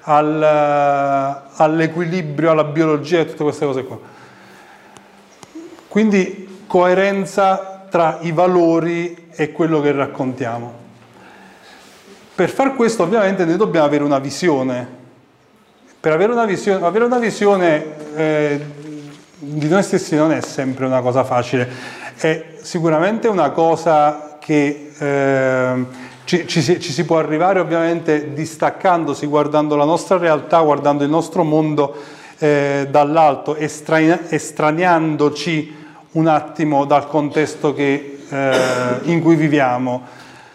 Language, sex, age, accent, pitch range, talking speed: Italian, male, 40-59, native, 140-170 Hz, 110 wpm